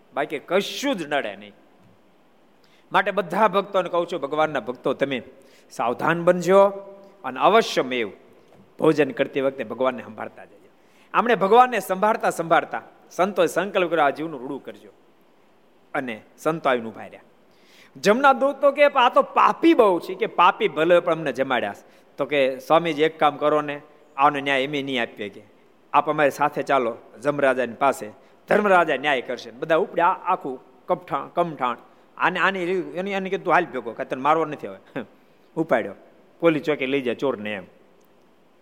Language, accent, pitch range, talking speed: Gujarati, native, 140-195 Hz, 75 wpm